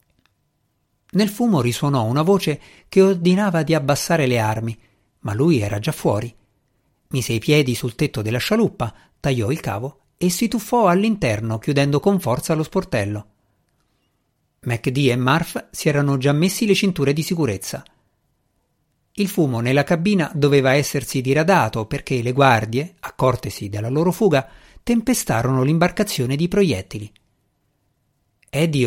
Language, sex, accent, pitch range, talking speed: Italian, male, native, 120-170 Hz, 135 wpm